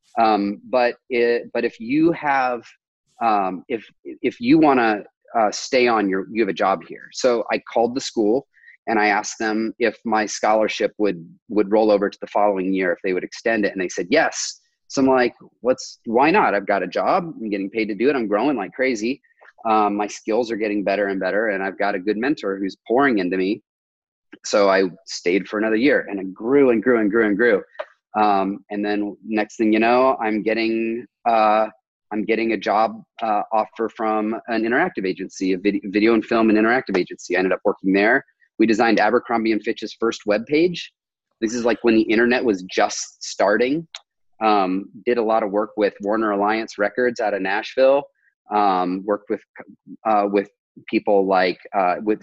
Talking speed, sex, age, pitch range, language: 200 wpm, male, 30-49, 100-120 Hz, English